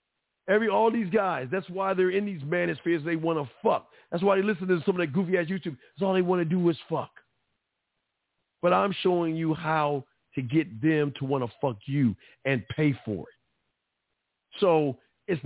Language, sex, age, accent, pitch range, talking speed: English, male, 50-69, American, 130-180 Hz, 200 wpm